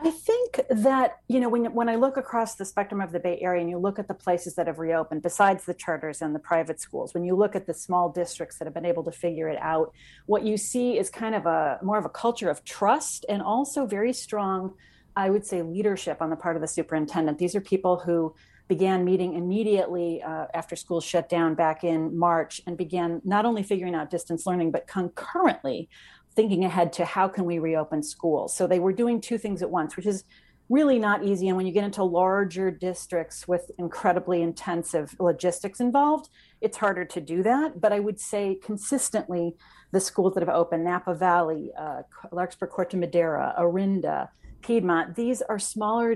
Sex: female